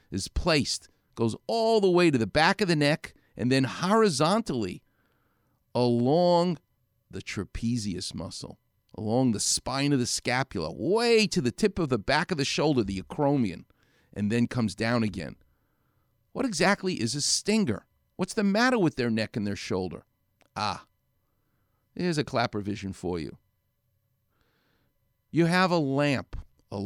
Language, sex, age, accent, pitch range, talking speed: English, male, 50-69, American, 110-165 Hz, 150 wpm